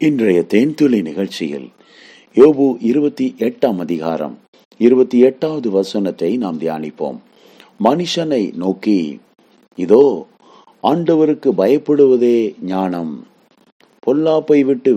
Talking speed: 60 wpm